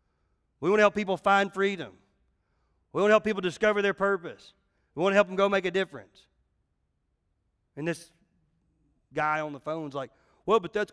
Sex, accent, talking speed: male, American, 185 wpm